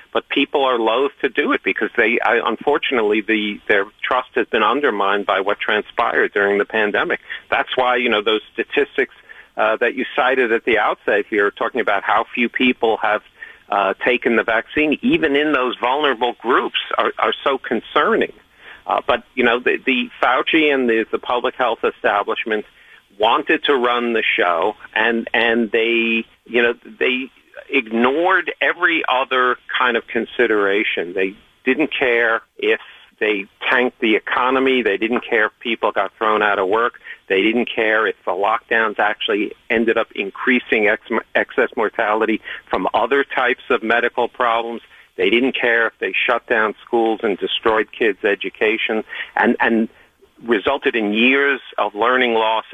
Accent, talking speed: American, 160 wpm